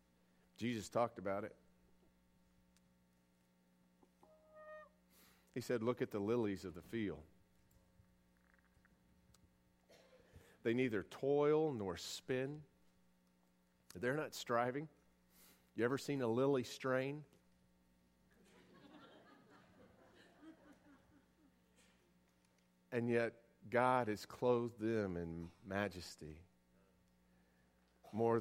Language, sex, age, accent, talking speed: English, male, 50-69, American, 75 wpm